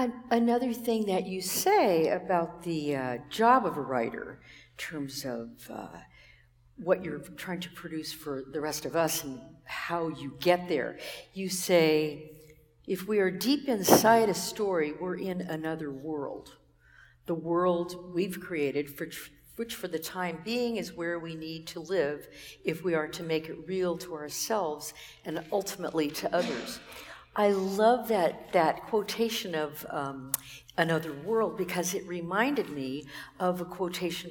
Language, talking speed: English, 155 wpm